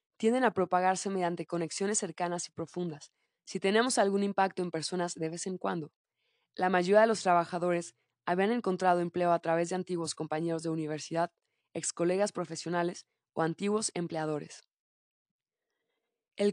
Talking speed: 145 wpm